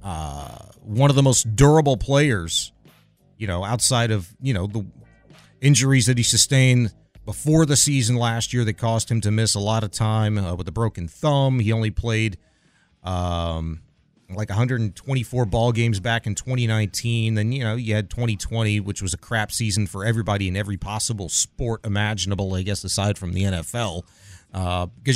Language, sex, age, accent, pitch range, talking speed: English, male, 30-49, American, 100-130 Hz, 175 wpm